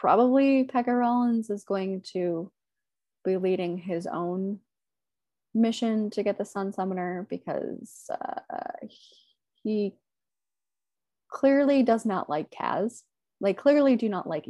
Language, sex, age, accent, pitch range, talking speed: English, female, 20-39, American, 185-245 Hz, 120 wpm